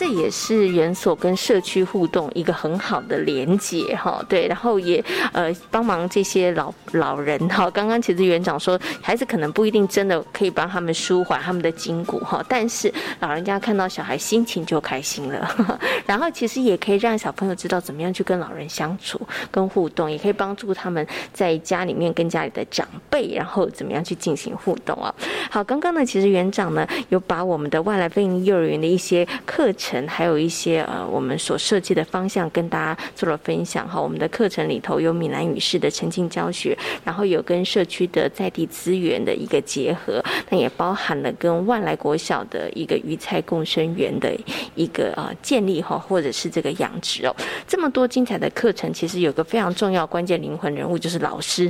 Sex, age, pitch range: female, 20-39, 170-215 Hz